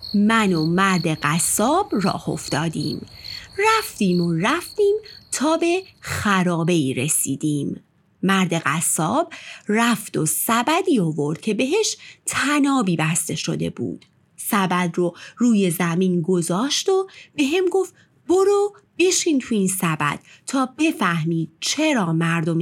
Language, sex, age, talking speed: Persian, female, 30-49, 115 wpm